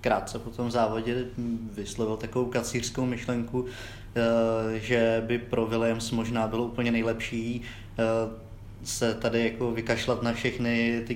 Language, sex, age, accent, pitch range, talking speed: English, male, 20-39, Czech, 110-120 Hz, 125 wpm